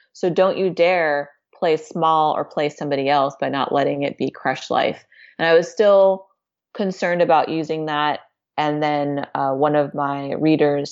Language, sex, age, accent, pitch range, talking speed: English, female, 20-39, American, 140-175 Hz, 175 wpm